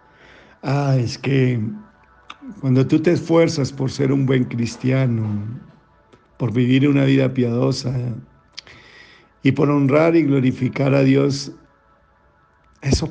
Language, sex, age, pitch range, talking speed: Spanish, male, 50-69, 130-185 Hz, 115 wpm